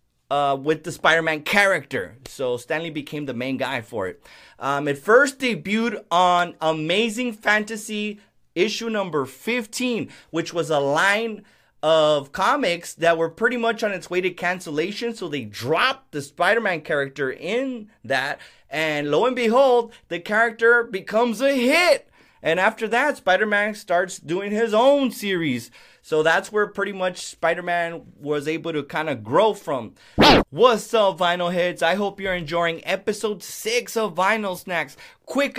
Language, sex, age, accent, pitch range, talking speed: English, male, 30-49, American, 155-215 Hz, 155 wpm